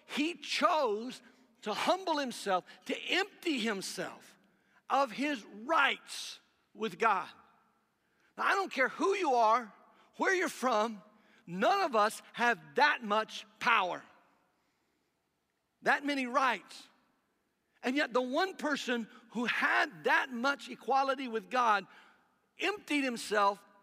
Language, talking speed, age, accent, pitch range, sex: English, 115 wpm, 60-79, American, 210-285 Hz, male